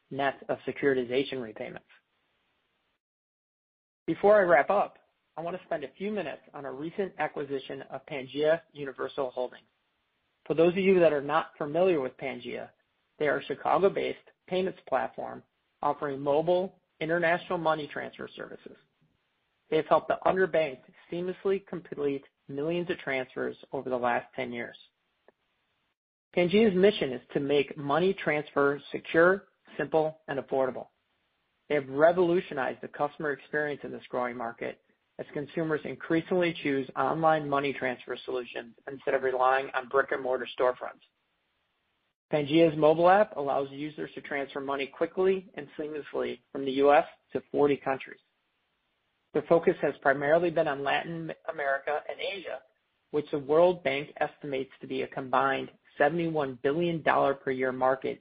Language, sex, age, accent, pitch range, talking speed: English, male, 40-59, American, 135-165 Hz, 140 wpm